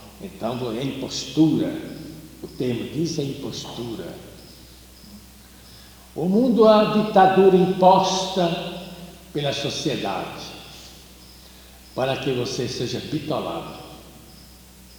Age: 60-79